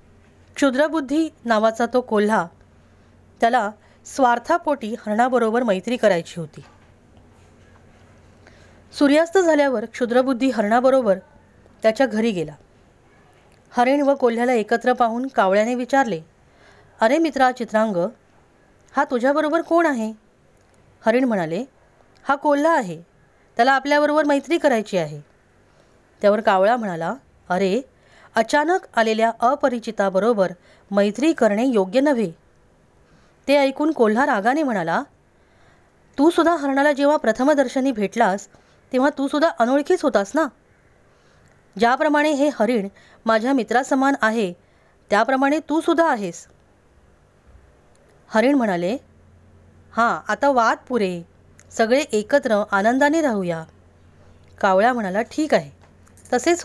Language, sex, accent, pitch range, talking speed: Marathi, female, native, 170-275 Hz, 100 wpm